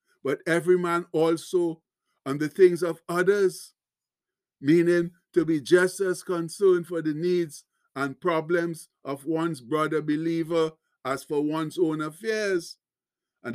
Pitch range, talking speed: 165-195 Hz, 135 wpm